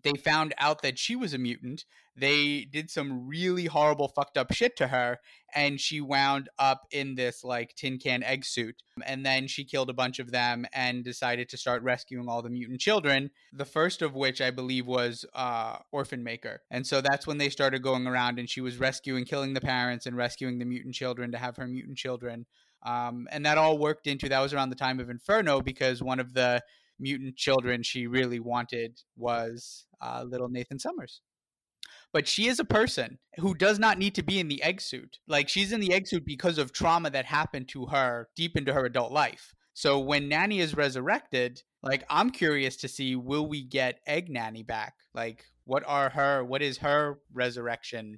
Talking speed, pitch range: 205 wpm, 125-145 Hz